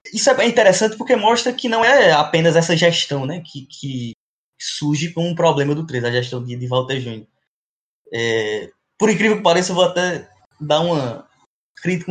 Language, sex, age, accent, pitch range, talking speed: Portuguese, male, 20-39, Brazilian, 135-185 Hz, 190 wpm